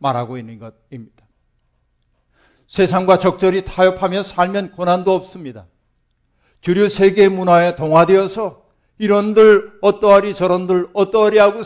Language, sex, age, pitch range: Korean, male, 60-79, 140-190 Hz